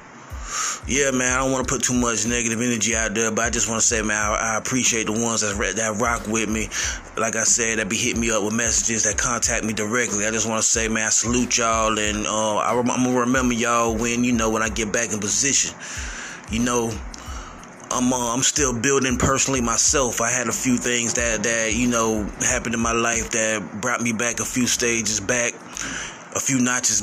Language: English